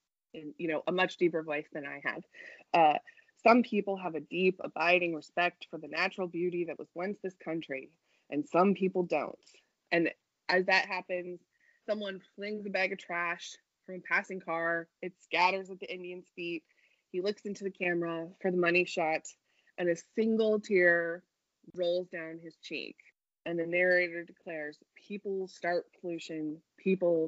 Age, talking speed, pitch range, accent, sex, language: 20-39, 165 wpm, 170-205 Hz, American, female, English